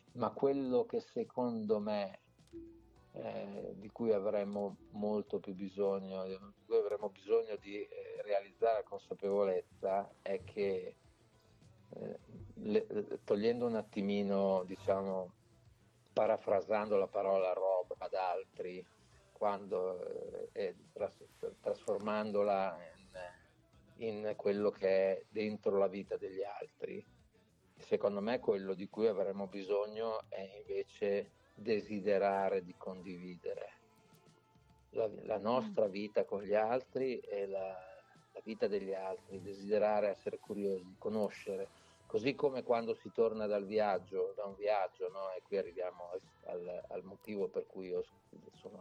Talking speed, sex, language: 115 wpm, male, Italian